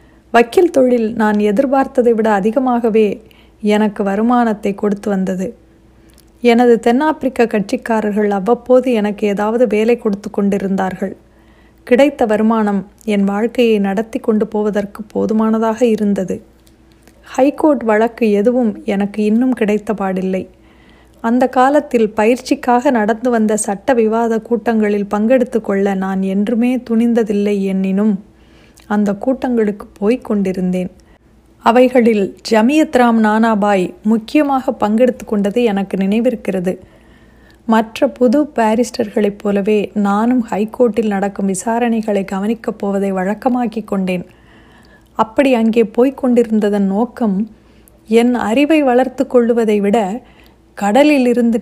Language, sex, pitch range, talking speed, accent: Tamil, female, 205-245 Hz, 95 wpm, native